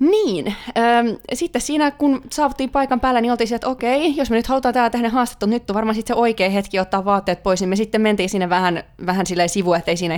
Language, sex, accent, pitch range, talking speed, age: Finnish, female, native, 175-240 Hz, 230 wpm, 20-39